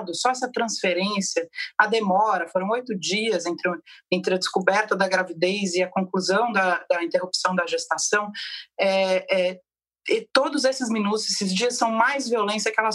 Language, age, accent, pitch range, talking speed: Portuguese, 30-49, Brazilian, 185-230 Hz, 160 wpm